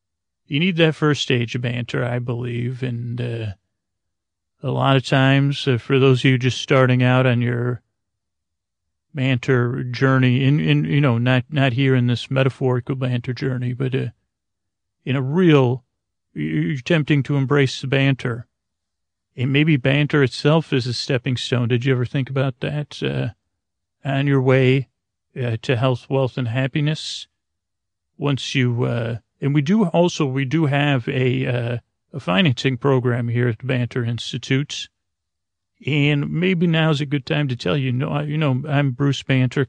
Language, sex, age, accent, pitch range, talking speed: English, male, 40-59, American, 115-140 Hz, 170 wpm